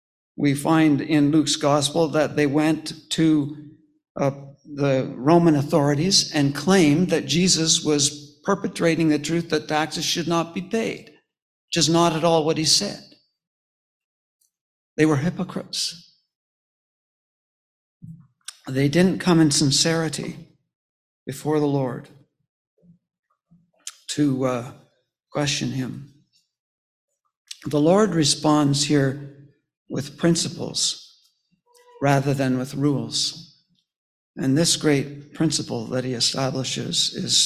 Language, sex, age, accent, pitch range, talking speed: English, male, 60-79, American, 140-160 Hz, 110 wpm